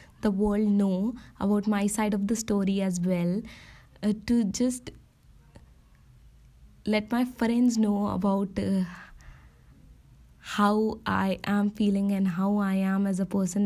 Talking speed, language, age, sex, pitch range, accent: 135 wpm, Hindi, 20-39, female, 195-245 Hz, native